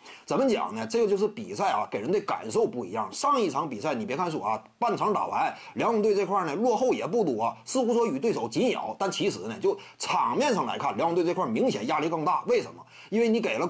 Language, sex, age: Chinese, male, 30-49